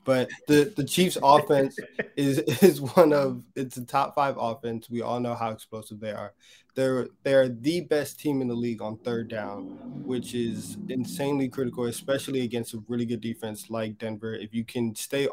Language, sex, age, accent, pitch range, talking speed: English, male, 20-39, American, 115-135 Hz, 190 wpm